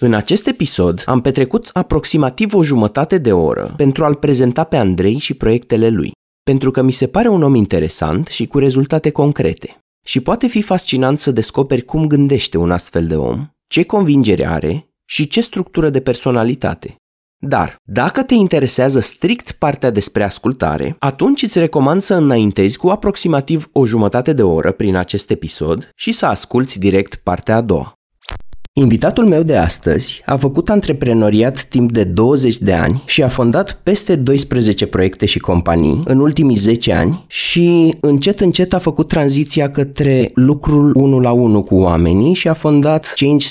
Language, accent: Romanian, native